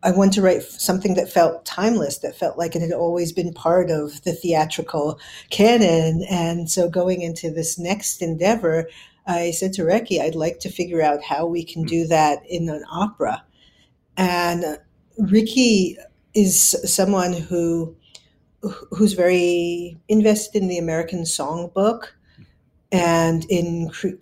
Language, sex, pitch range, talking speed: English, female, 165-190 Hz, 150 wpm